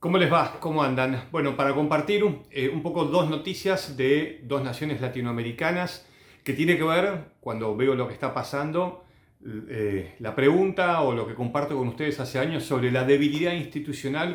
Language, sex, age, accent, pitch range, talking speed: Spanish, male, 40-59, Argentinian, 125-155 Hz, 175 wpm